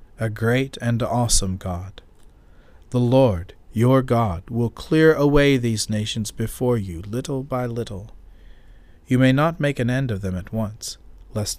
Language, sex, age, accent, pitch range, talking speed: English, male, 40-59, American, 100-125 Hz, 155 wpm